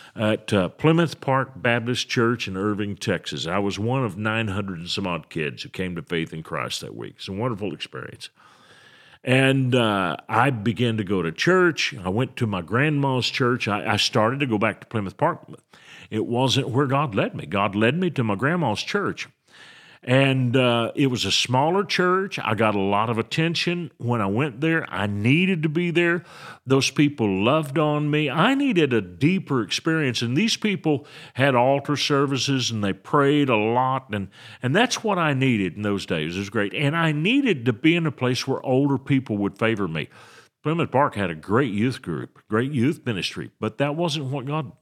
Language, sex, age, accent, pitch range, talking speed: English, male, 50-69, American, 110-145 Hz, 200 wpm